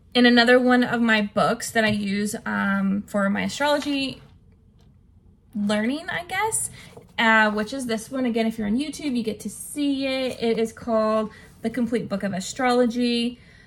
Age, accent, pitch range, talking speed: 20-39, American, 200-240 Hz, 170 wpm